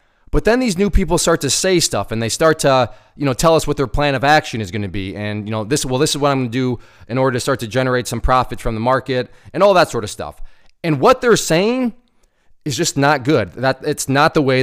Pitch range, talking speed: 130-170 Hz, 270 wpm